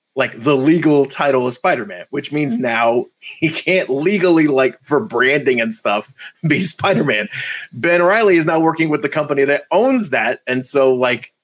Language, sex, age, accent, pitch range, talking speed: English, male, 30-49, American, 125-165 Hz, 175 wpm